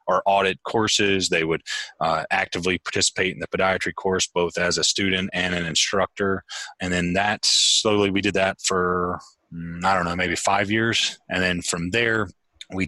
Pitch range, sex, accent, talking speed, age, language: 85-95 Hz, male, American, 175 wpm, 30-49, English